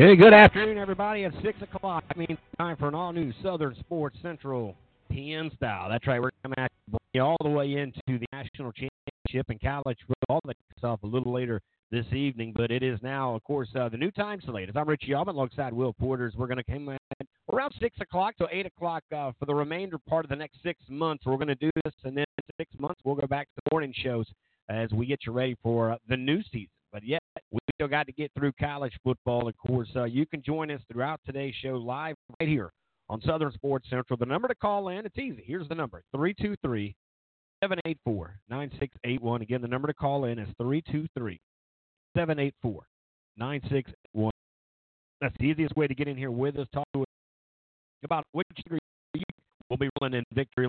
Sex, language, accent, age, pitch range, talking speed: male, English, American, 50-69, 120-155 Hz, 225 wpm